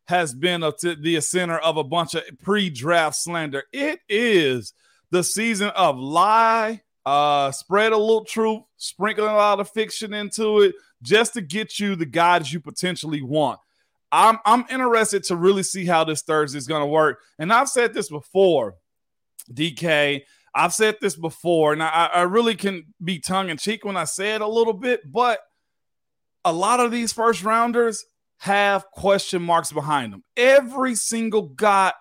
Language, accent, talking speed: English, American, 165 wpm